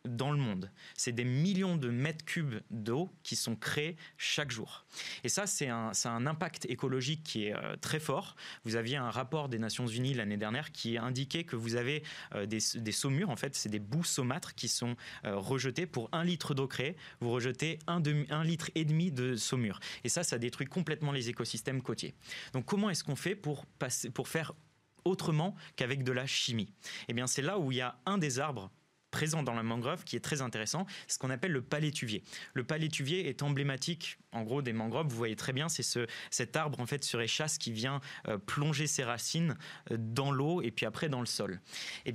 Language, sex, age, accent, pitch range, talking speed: French, male, 20-39, French, 120-155 Hz, 220 wpm